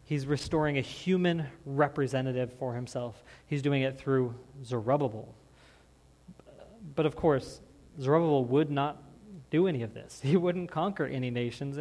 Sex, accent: male, American